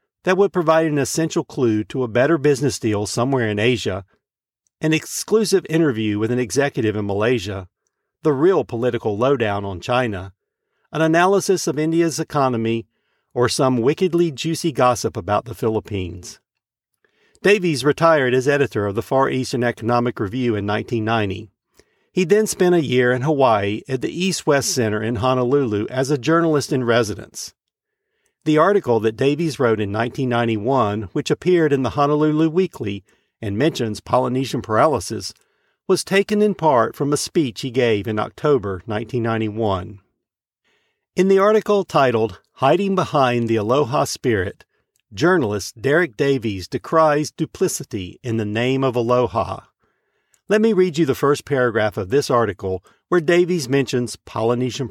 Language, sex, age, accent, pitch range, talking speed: English, male, 50-69, American, 110-160 Hz, 145 wpm